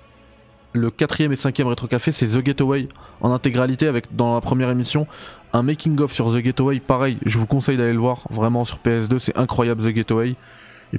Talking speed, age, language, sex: 195 wpm, 20-39, French, male